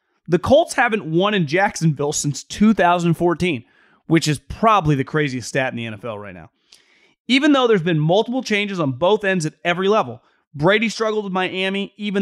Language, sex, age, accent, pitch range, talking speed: English, male, 30-49, American, 140-205 Hz, 175 wpm